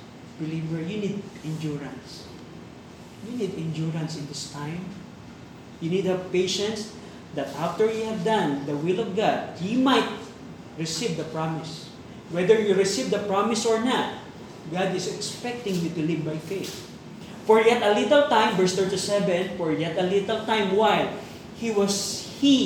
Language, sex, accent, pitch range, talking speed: Filipino, male, native, 155-200 Hz, 160 wpm